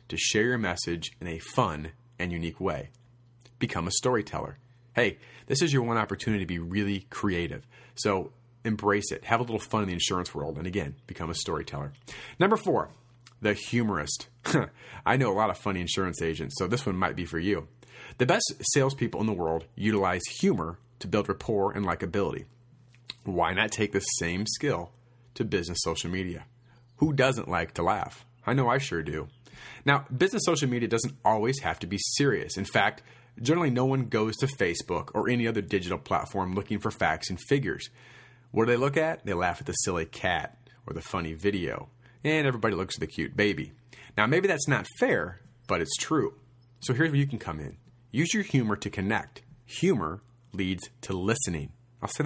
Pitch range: 95-125 Hz